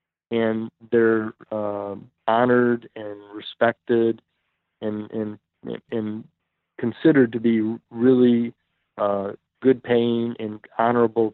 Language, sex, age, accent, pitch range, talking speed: English, male, 40-59, American, 110-120 Hz, 90 wpm